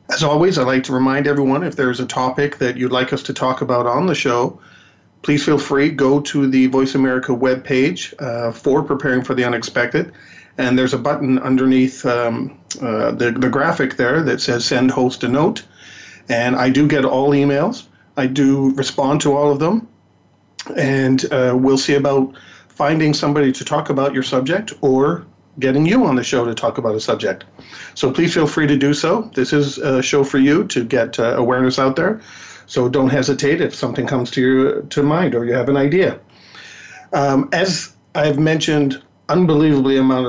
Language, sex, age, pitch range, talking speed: English, male, 40-59, 130-145 Hz, 190 wpm